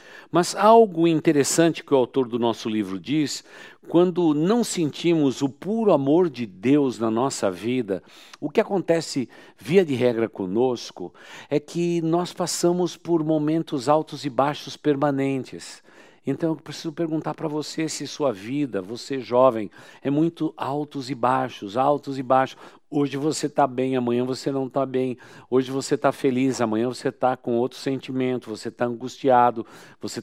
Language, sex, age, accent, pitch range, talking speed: Portuguese, male, 60-79, Brazilian, 120-155 Hz, 160 wpm